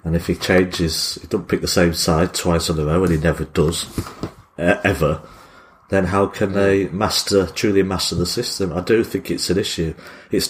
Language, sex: English, male